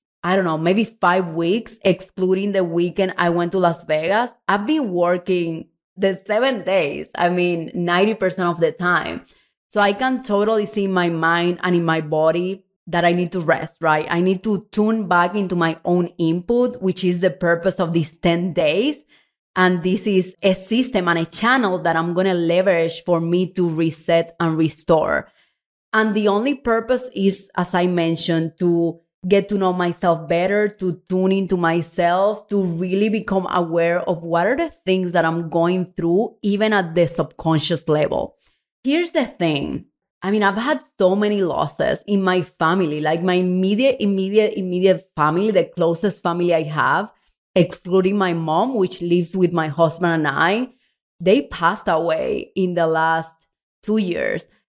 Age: 20-39